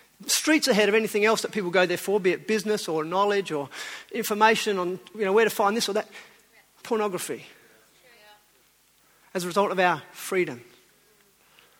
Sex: male